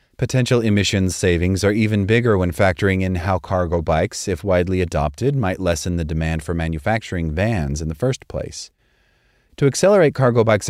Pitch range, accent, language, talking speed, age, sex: 85-110 Hz, American, English, 170 wpm, 30-49, male